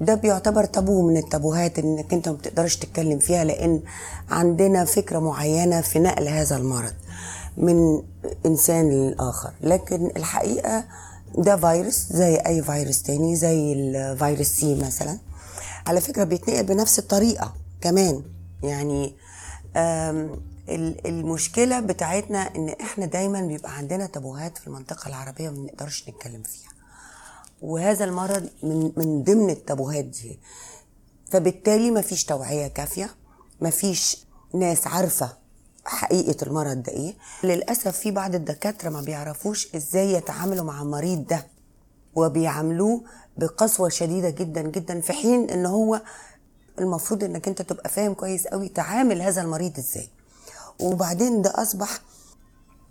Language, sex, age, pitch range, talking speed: Arabic, female, 30-49, 145-190 Hz, 120 wpm